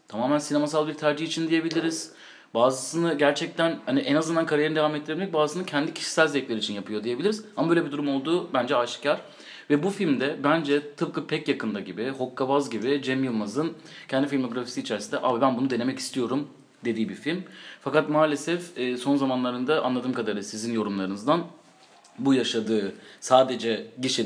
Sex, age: male, 30-49